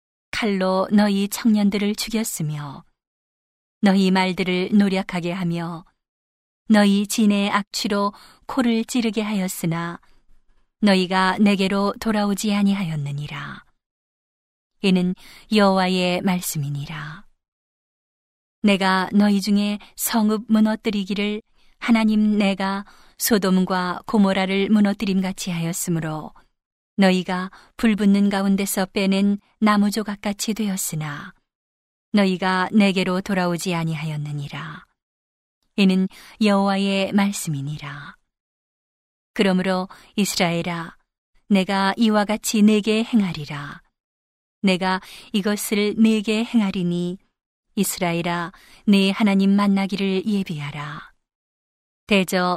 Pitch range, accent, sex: 180-210 Hz, native, female